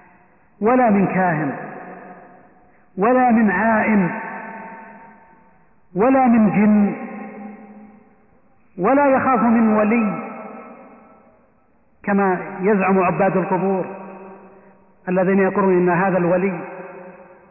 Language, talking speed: Arabic, 75 wpm